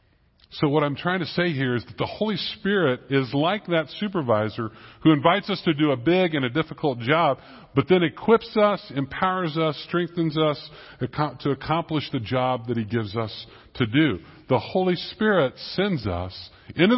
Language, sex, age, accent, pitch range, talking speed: English, female, 50-69, American, 120-160 Hz, 180 wpm